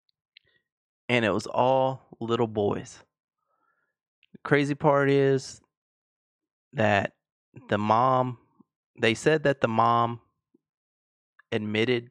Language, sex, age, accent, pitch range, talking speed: English, male, 30-49, American, 115-140 Hz, 95 wpm